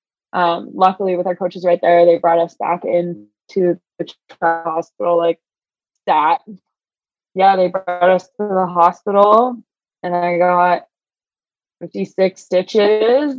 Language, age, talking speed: English, 20-39, 125 wpm